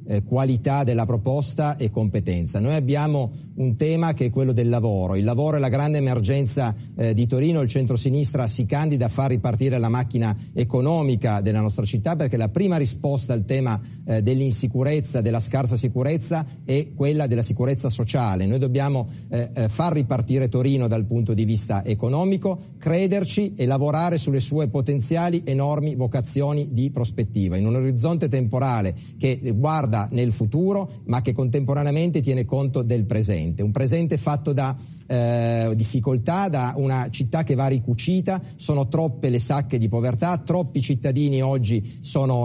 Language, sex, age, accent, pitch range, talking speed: Italian, male, 40-59, native, 120-155 Hz, 155 wpm